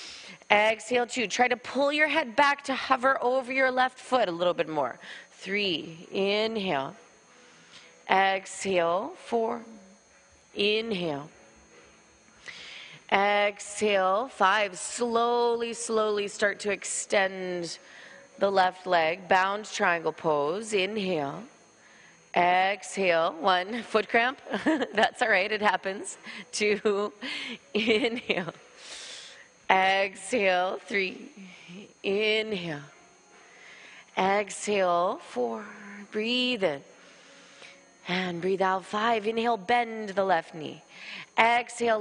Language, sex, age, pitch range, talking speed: English, female, 30-49, 185-235 Hz, 95 wpm